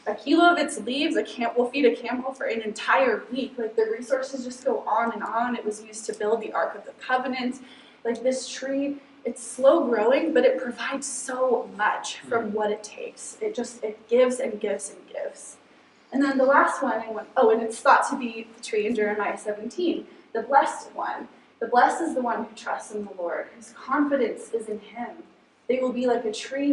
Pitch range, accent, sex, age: 225-275 Hz, American, female, 20-39